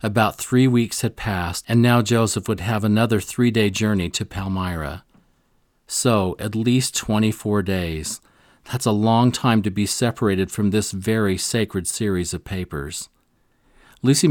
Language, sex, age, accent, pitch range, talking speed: English, male, 40-59, American, 100-120 Hz, 145 wpm